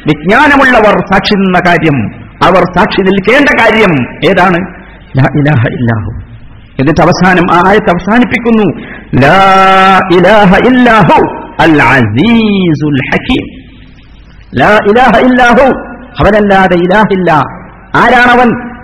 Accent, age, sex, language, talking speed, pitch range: native, 50-69, male, Malayalam, 40 wpm, 145-230 Hz